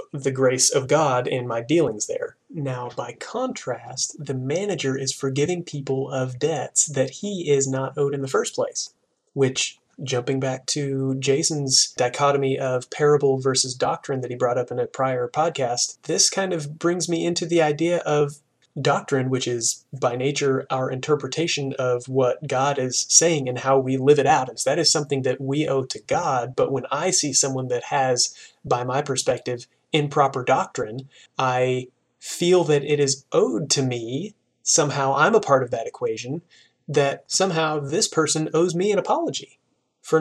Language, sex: English, male